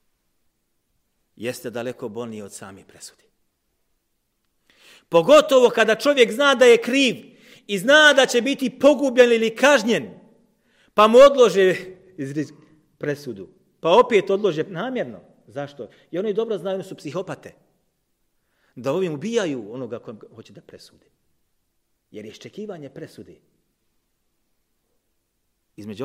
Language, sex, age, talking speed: English, male, 40-59, 110 wpm